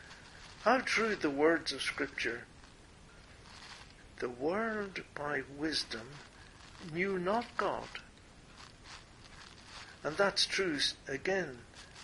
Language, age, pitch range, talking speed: English, 60-79, 135-190 Hz, 85 wpm